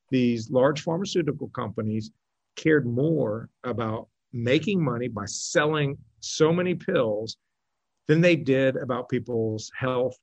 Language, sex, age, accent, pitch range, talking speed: English, male, 50-69, American, 115-145 Hz, 115 wpm